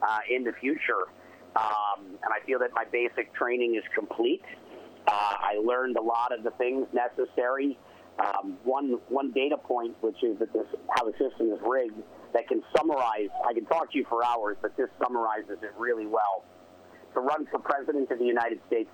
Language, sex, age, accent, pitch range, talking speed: English, male, 50-69, American, 115-150 Hz, 190 wpm